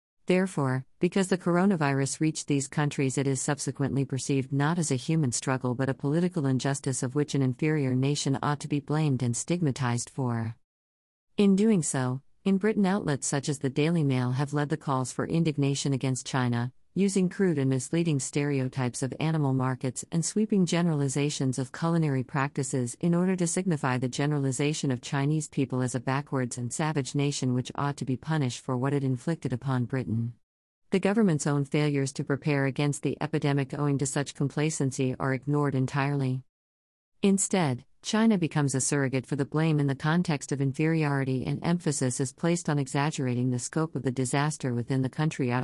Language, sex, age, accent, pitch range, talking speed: English, female, 50-69, American, 130-155 Hz, 175 wpm